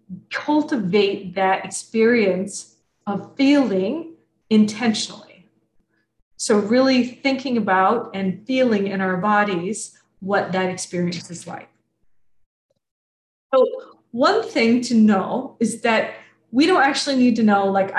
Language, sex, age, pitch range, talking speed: English, female, 30-49, 190-245 Hz, 115 wpm